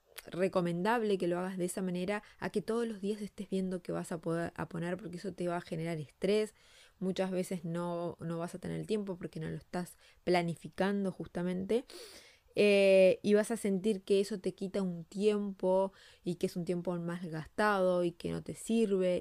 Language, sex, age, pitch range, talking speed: Spanish, female, 20-39, 175-205 Hz, 200 wpm